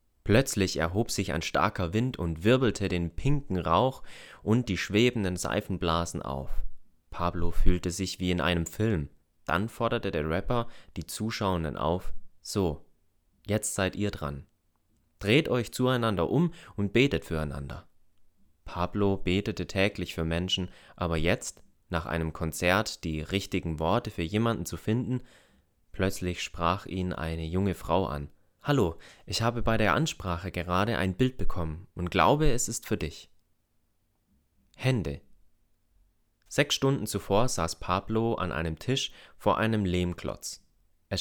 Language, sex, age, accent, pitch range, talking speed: German, male, 30-49, German, 80-110 Hz, 140 wpm